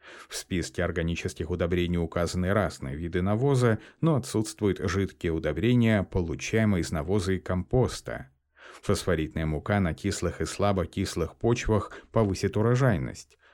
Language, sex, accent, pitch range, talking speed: Russian, male, native, 90-110 Hz, 115 wpm